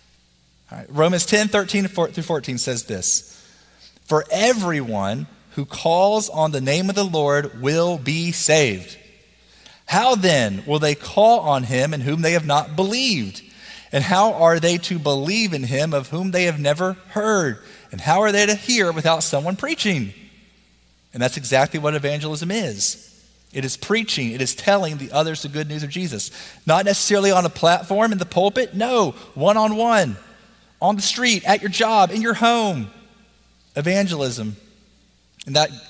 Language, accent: English, American